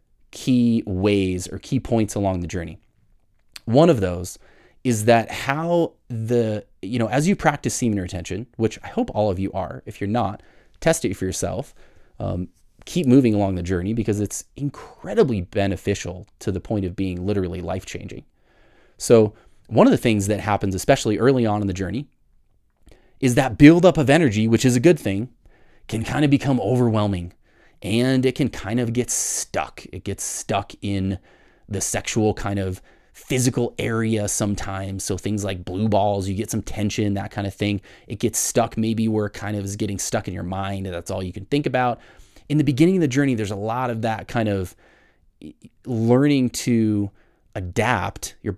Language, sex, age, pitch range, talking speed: English, male, 30-49, 95-120 Hz, 185 wpm